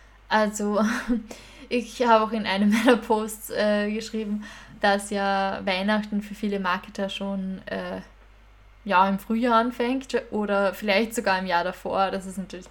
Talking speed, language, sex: 145 wpm, German, female